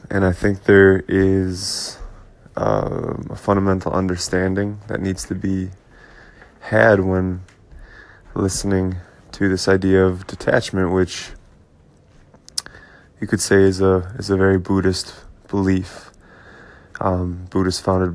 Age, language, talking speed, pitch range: 20-39, English, 110 wpm, 95-100 Hz